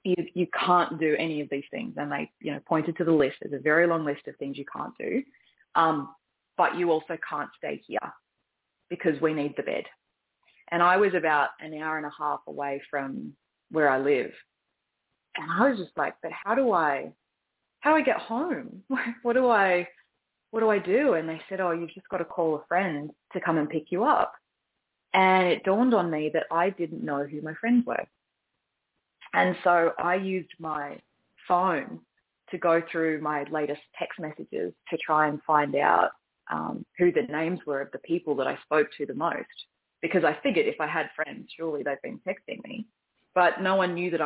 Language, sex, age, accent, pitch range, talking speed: English, female, 20-39, Australian, 155-180 Hz, 205 wpm